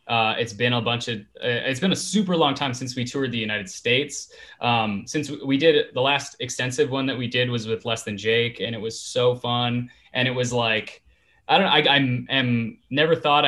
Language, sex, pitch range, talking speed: English, male, 120-140 Hz, 230 wpm